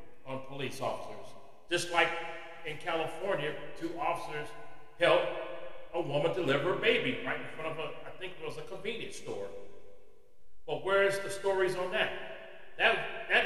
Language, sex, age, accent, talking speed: English, male, 40-59, American, 160 wpm